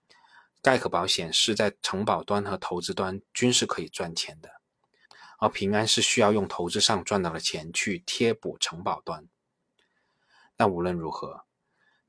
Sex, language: male, Chinese